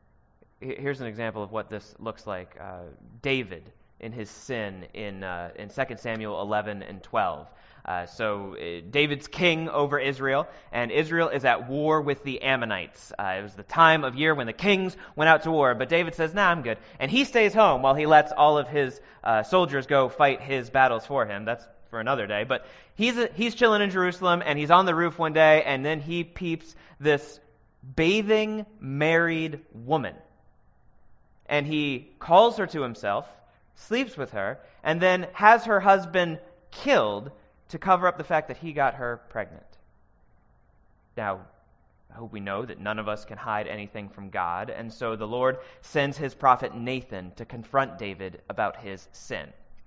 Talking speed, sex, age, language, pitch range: 185 wpm, male, 20-39, English, 110-160 Hz